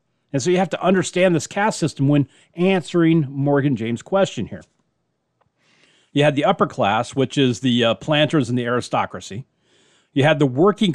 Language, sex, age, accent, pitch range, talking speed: English, male, 40-59, American, 125-150 Hz, 175 wpm